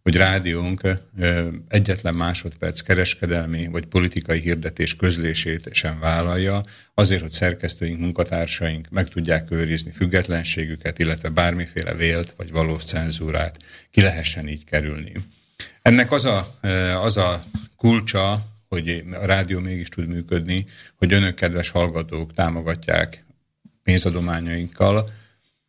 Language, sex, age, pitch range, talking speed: Slovak, male, 50-69, 85-95 Hz, 105 wpm